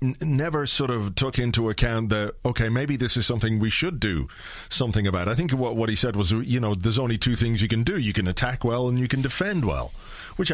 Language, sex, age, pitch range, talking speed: English, male, 40-59, 100-130 Hz, 245 wpm